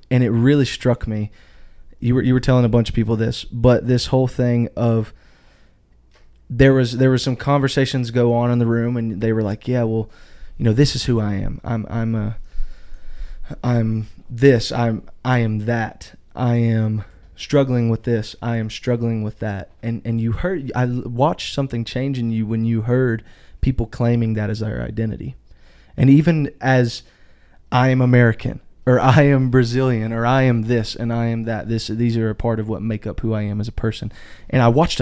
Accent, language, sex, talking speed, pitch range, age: American, English, male, 200 wpm, 110-125 Hz, 20-39